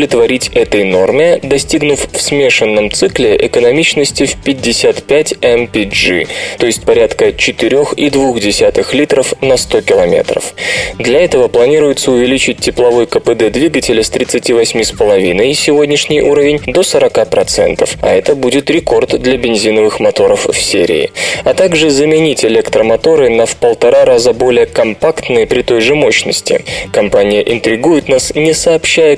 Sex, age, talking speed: male, 20-39, 125 wpm